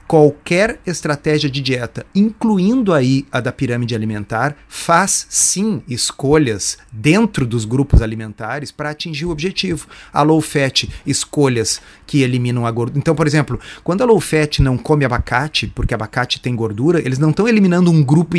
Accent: Brazilian